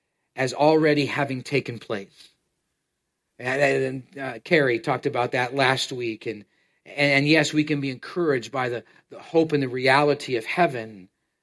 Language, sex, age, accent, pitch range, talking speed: English, male, 40-59, American, 135-165 Hz, 160 wpm